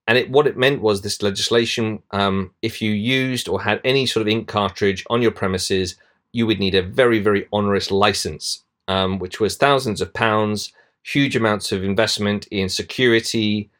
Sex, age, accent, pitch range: male, 30-49, British, 100-115 Hz